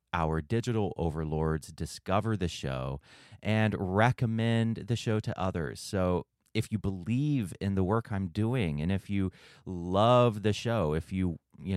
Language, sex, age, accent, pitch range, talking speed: English, male, 30-49, American, 85-115 Hz, 155 wpm